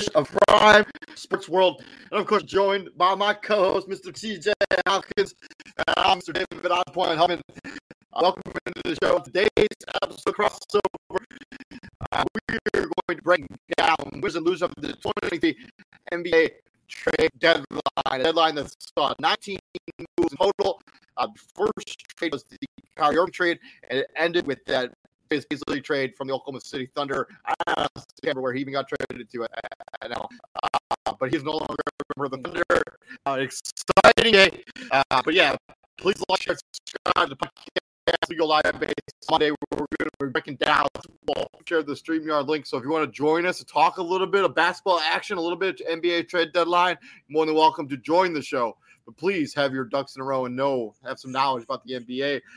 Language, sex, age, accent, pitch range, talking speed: English, male, 30-49, American, 140-205 Hz, 190 wpm